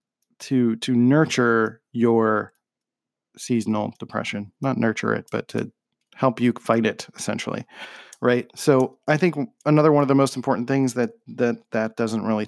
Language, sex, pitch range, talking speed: English, male, 115-135 Hz, 155 wpm